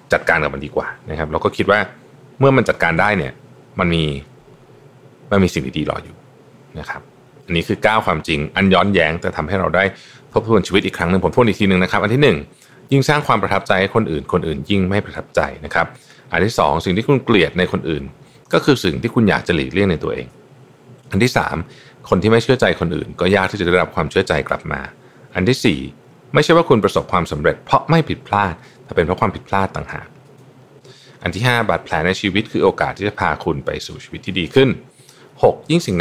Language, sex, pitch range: Thai, male, 80-120 Hz